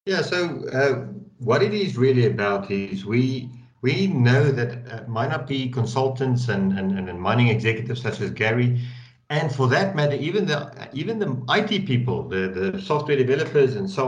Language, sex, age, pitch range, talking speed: English, male, 60-79, 110-140 Hz, 170 wpm